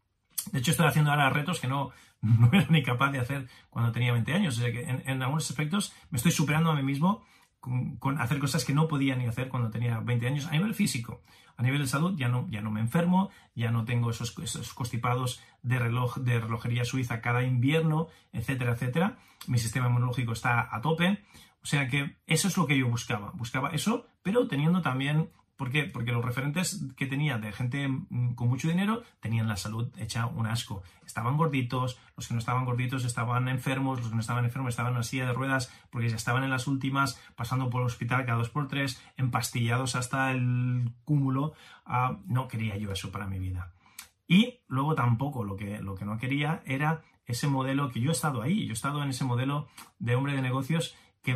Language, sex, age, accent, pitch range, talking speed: Spanish, male, 30-49, Spanish, 120-150 Hz, 215 wpm